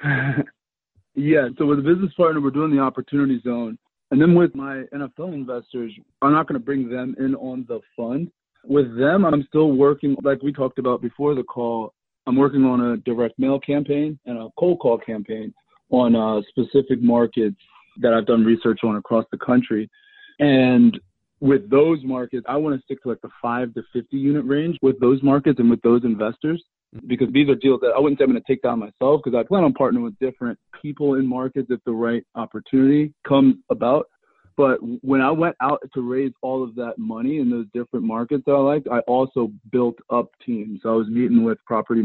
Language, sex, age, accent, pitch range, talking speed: English, male, 30-49, American, 115-145 Hz, 205 wpm